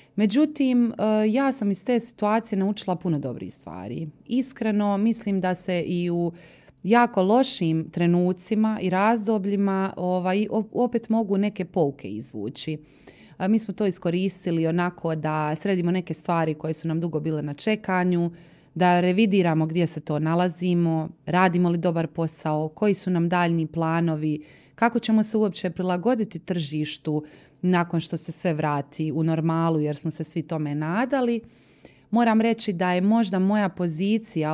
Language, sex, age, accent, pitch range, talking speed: Croatian, female, 30-49, native, 160-205 Hz, 145 wpm